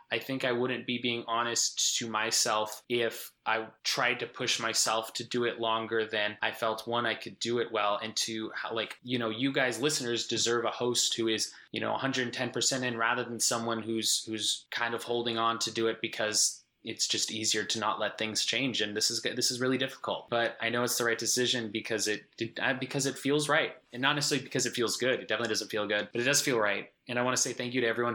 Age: 20-39